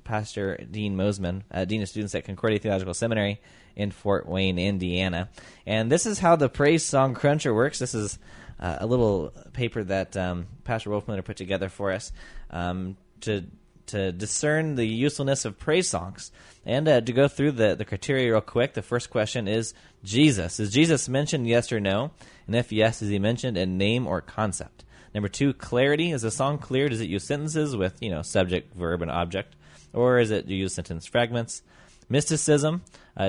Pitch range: 95-120 Hz